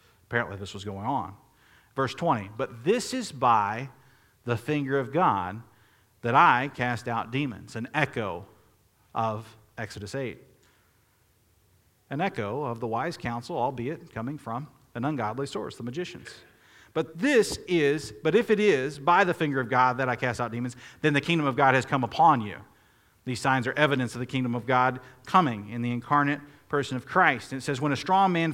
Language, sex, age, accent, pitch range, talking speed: English, male, 40-59, American, 110-145 Hz, 185 wpm